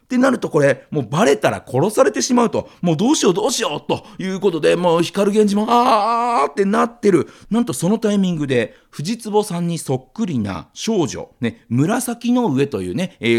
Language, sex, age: Japanese, male, 40-59